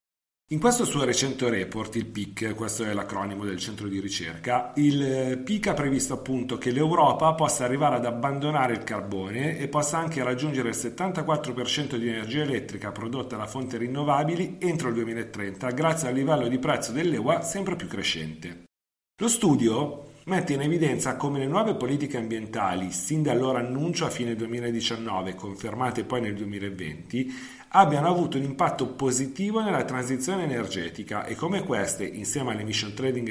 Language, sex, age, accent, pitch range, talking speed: Italian, male, 40-59, native, 110-150 Hz, 155 wpm